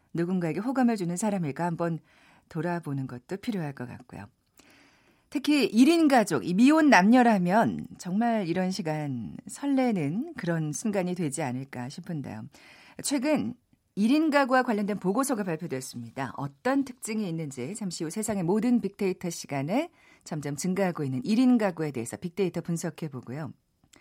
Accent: native